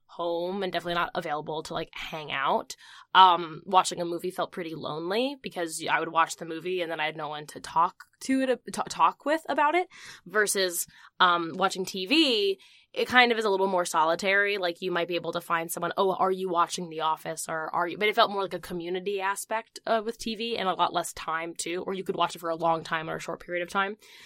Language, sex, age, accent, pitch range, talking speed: English, female, 10-29, American, 170-215 Hz, 240 wpm